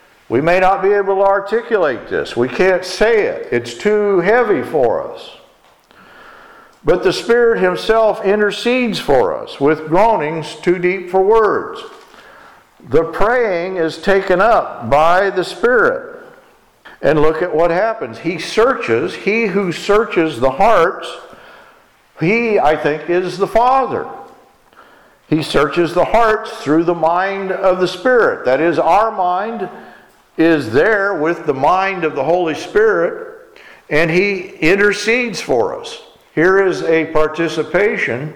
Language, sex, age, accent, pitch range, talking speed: English, male, 50-69, American, 165-230 Hz, 140 wpm